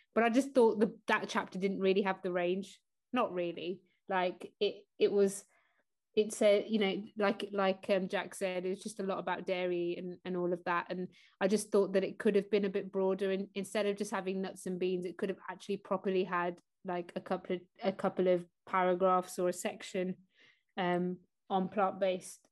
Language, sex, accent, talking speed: English, female, British, 215 wpm